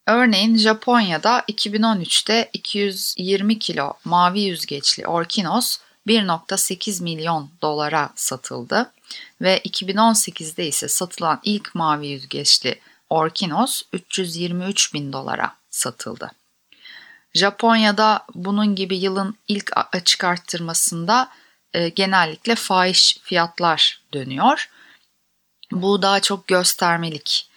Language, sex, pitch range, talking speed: Turkish, female, 170-215 Hz, 85 wpm